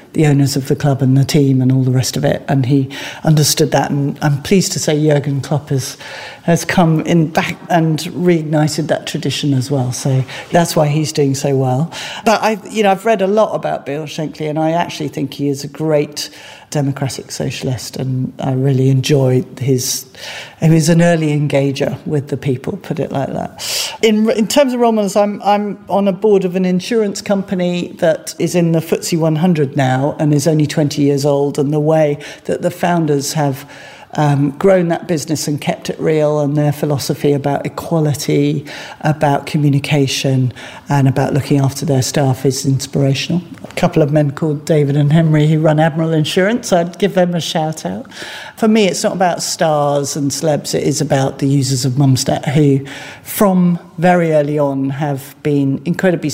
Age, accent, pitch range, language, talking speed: 50-69, British, 140-170 Hz, English, 190 wpm